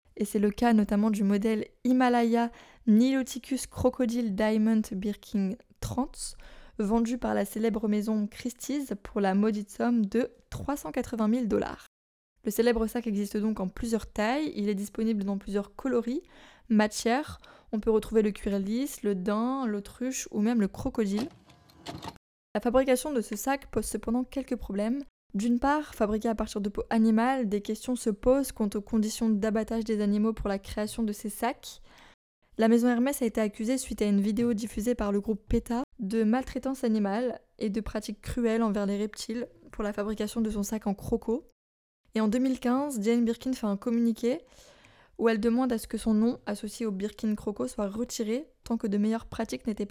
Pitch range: 210-245 Hz